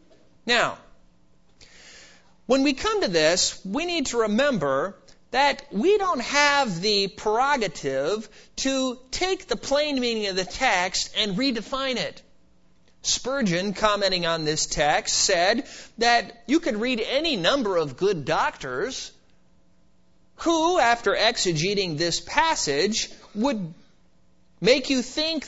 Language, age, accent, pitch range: English, 30-49, American, 165-260 Hz